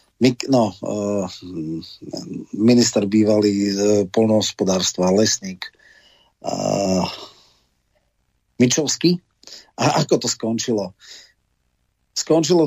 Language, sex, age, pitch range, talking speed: Slovak, male, 40-59, 110-125 Hz, 65 wpm